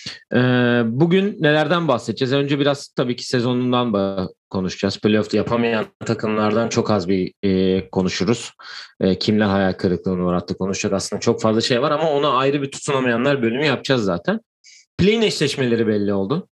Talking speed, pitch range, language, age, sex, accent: 140 wpm, 105-130 Hz, Turkish, 40-59, male, native